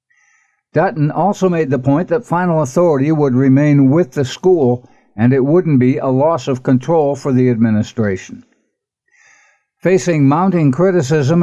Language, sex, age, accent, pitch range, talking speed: English, male, 60-79, American, 130-165 Hz, 140 wpm